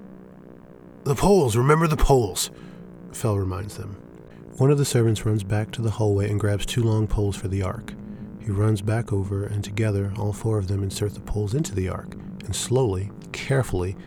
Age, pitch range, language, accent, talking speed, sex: 40-59, 100-115 Hz, English, American, 190 wpm, male